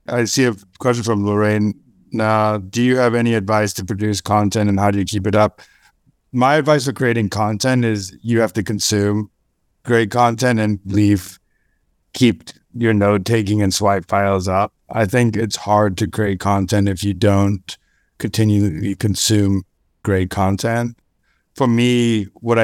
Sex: male